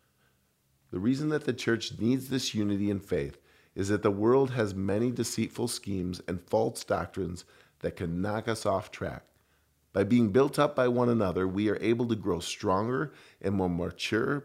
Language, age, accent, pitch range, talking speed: English, 40-59, American, 90-120 Hz, 180 wpm